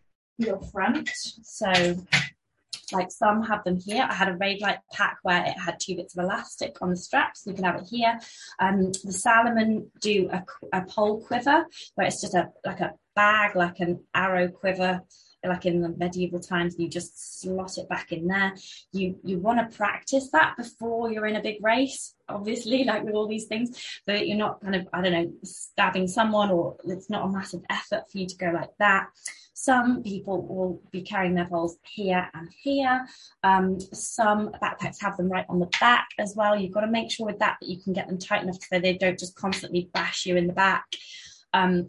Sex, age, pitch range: female, 20-39, 175-210 Hz